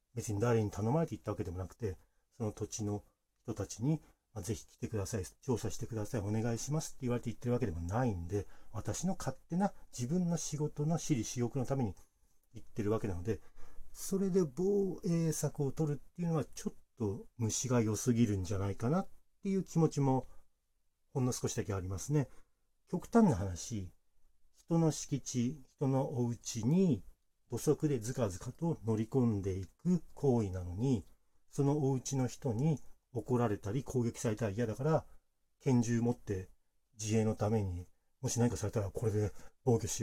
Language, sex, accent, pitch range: Japanese, male, native, 105-140 Hz